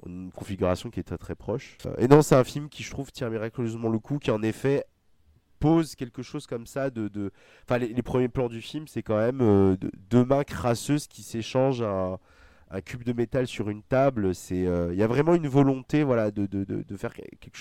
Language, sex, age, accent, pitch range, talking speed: French, male, 30-49, French, 100-130 Hz, 235 wpm